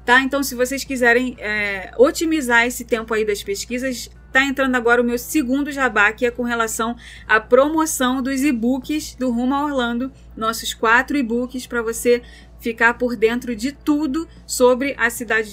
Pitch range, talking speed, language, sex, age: 230-265 Hz, 170 wpm, Portuguese, female, 20-39